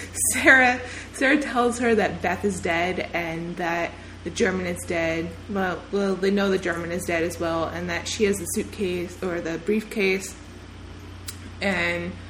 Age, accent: 20-39, American